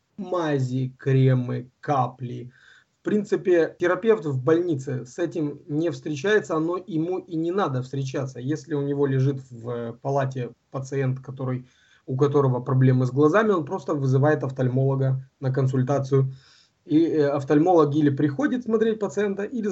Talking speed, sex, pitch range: 135 wpm, male, 130-165 Hz